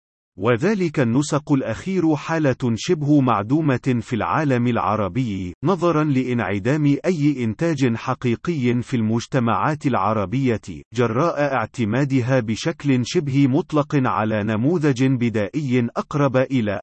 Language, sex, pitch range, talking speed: Arabic, male, 115-145 Hz, 95 wpm